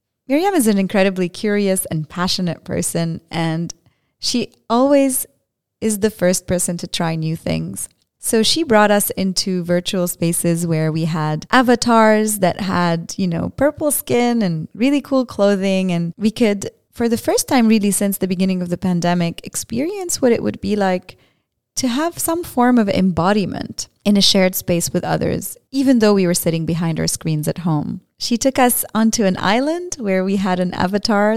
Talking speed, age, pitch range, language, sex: 180 wpm, 30-49, 175-235 Hz, English, female